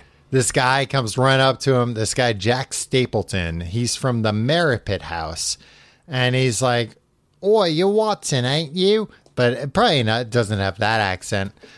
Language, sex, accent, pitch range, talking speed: English, male, American, 105-135 Hz, 160 wpm